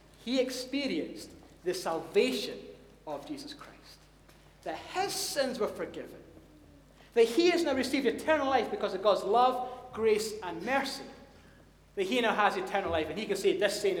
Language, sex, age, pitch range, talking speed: English, male, 30-49, 215-300 Hz, 165 wpm